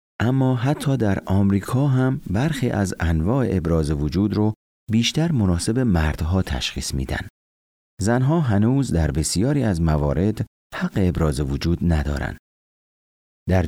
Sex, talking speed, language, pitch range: male, 120 wpm, Persian, 75-105 Hz